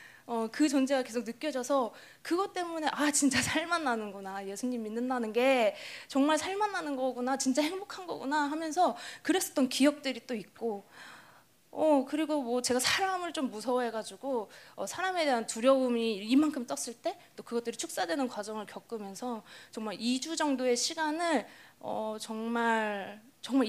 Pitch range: 225-290 Hz